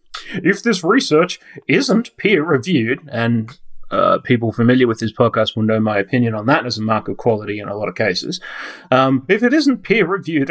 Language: English